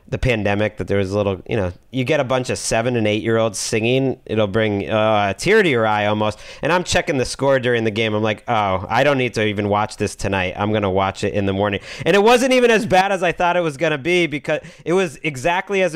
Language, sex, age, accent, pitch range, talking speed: English, male, 40-59, American, 115-155 Hz, 280 wpm